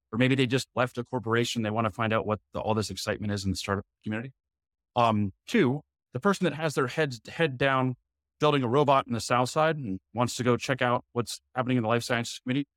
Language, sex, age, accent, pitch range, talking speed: English, male, 30-49, American, 105-135 Hz, 240 wpm